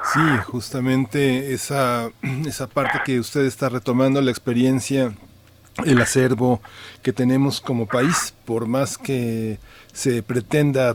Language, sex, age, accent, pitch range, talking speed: Spanish, male, 40-59, Mexican, 115-140 Hz, 120 wpm